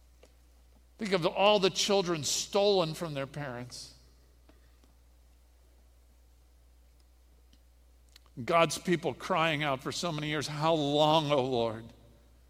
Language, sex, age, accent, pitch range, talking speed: English, male, 50-69, American, 105-155 Hz, 105 wpm